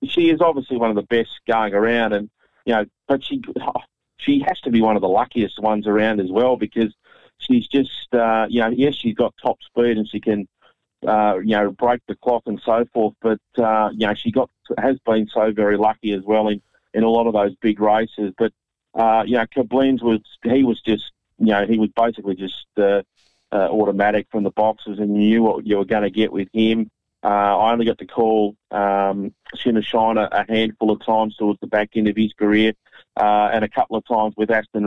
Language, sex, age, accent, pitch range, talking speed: English, male, 30-49, Australian, 105-115 Hz, 220 wpm